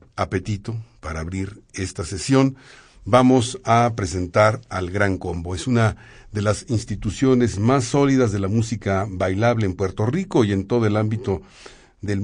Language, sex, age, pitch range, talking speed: Spanish, male, 50-69, 100-125 Hz, 150 wpm